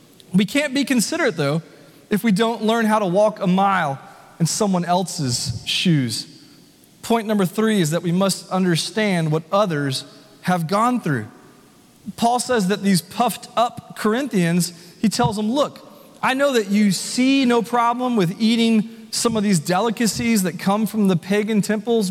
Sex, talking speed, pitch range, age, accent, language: male, 165 wpm, 185-245 Hz, 30-49, American, English